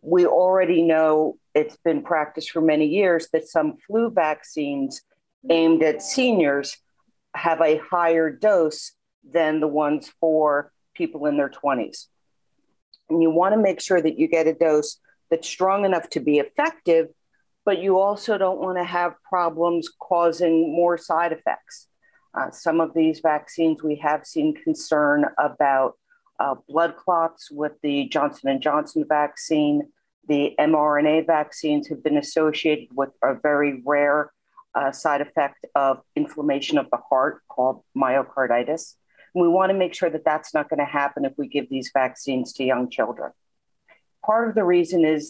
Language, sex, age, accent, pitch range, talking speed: English, female, 50-69, American, 150-185 Hz, 155 wpm